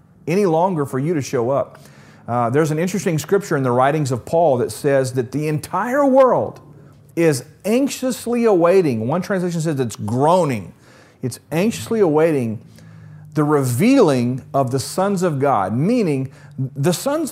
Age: 40-59